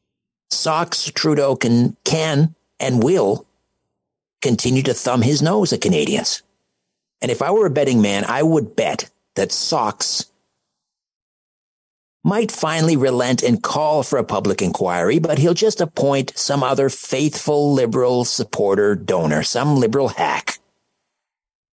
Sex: male